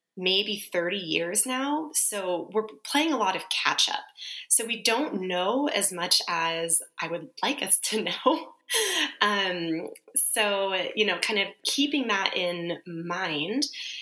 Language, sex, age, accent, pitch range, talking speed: English, female, 20-39, American, 170-220 Hz, 145 wpm